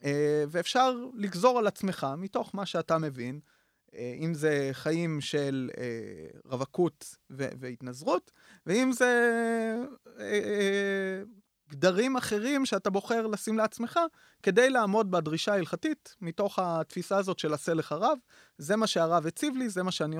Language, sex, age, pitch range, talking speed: Hebrew, male, 30-49, 145-210 Hz, 135 wpm